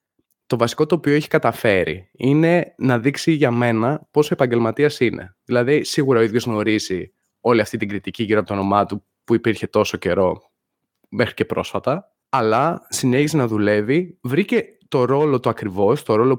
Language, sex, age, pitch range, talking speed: Greek, male, 20-39, 110-145 Hz, 170 wpm